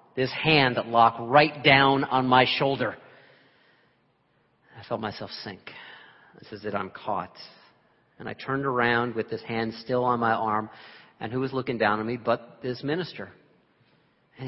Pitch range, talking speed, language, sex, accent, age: 110-150 Hz, 165 wpm, English, male, American, 40-59